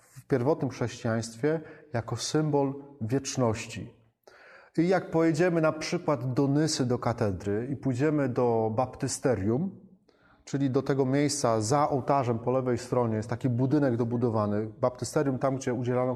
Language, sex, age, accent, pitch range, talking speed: Polish, male, 30-49, native, 120-150 Hz, 135 wpm